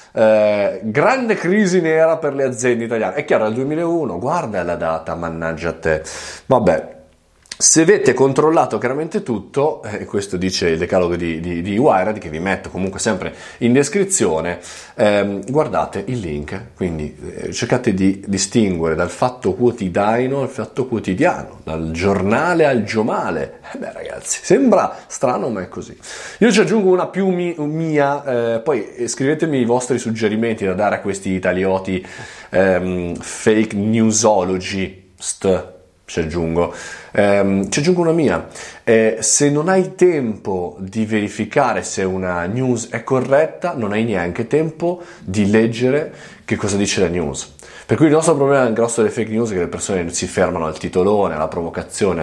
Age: 30-49